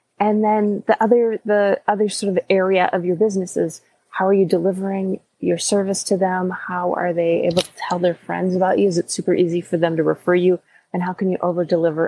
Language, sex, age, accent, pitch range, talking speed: English, female, 30-49, American, 180-215 Hz, 230 wpm